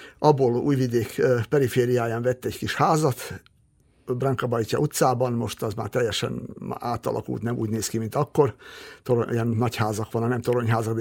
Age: 60-79